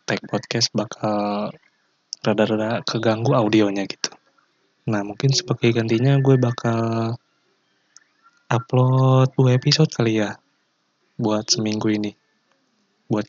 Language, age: Indonesian, 20-39